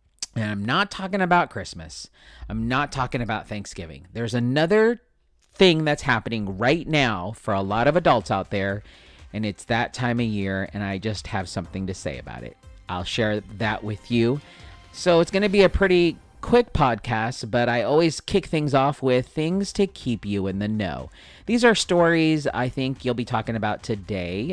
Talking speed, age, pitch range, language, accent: 190 wpm, 40-59, 105-130 Hz, English, American